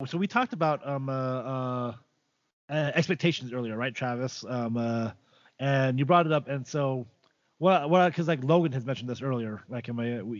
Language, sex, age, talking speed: English, male, 30-49, 195 wpm